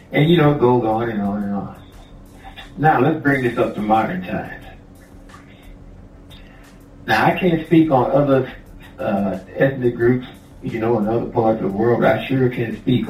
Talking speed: 185 wpm